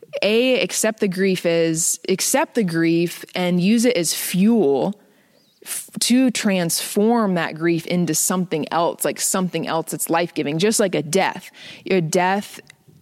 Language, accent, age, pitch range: English, American, 20-39, 160-185 Hz